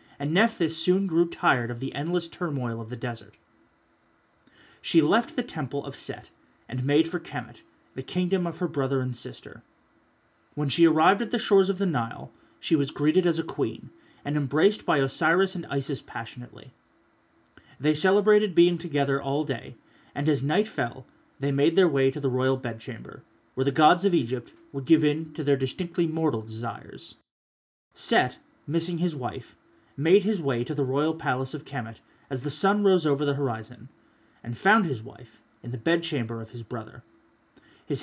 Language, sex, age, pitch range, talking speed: English, male, 30-49, 130-175 Hz, 180 wpm